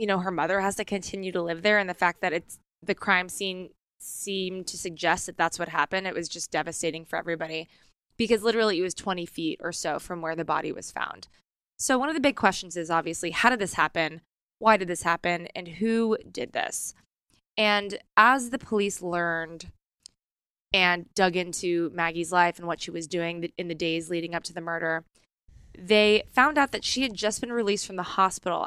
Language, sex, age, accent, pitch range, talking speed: English, female, 20-39, American, 170-205 Hz, 210 wpm